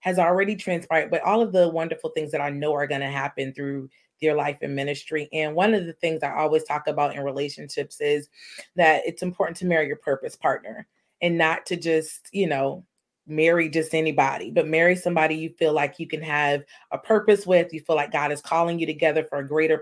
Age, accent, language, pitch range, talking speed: 30-49, American, English, 155-180 Hz, 220 wpm